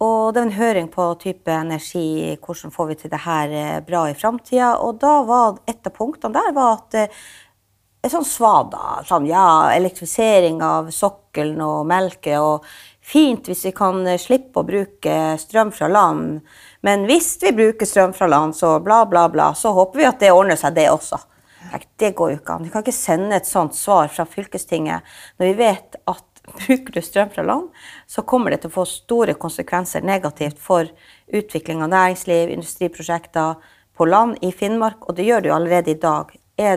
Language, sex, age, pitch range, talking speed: English, female, 30-49, 160-220 Hz, 175 wpm